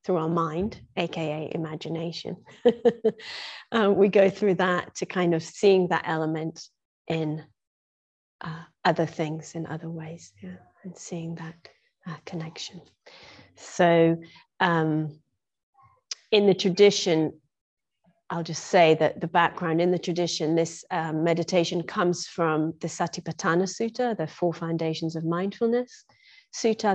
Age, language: 30-49, English